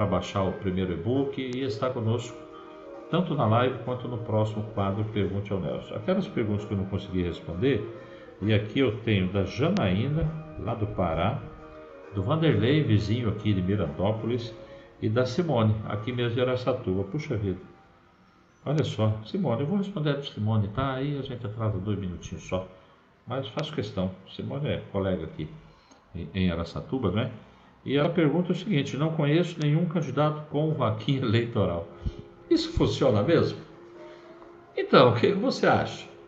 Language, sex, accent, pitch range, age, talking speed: Portuguese, male, Brazilian, 100-145 Hz, 60-79, 160 wpm